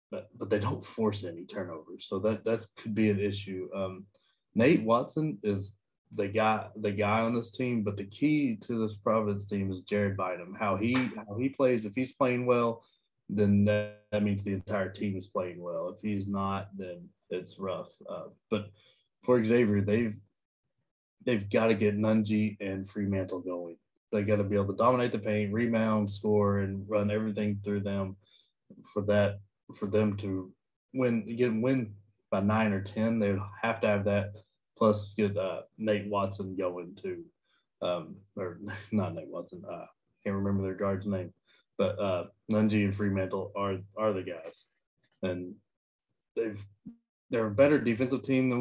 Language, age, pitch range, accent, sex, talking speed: English, 20-39, 100-110 Hz, American, male, 175 wpm